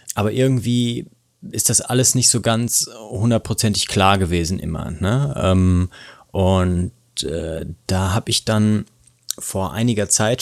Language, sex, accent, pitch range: German, male, German, 90-115 Hz